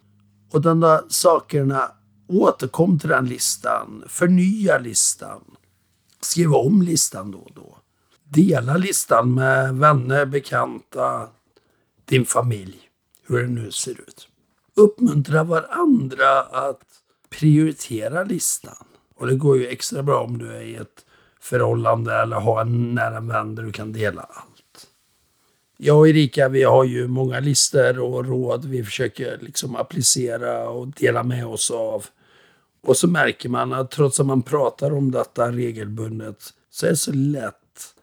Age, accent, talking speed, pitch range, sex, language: 60-79, Swedish, 140 wpm, 115-150 Hz, male, English